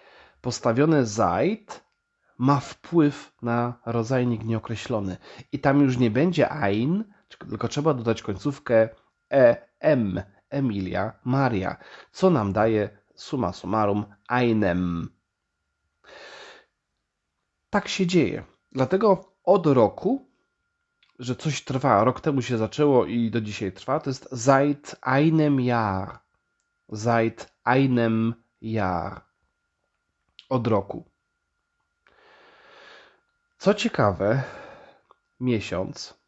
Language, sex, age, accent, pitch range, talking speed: Polish, male, 30-49, native, 105-140 Hz, 95 wpm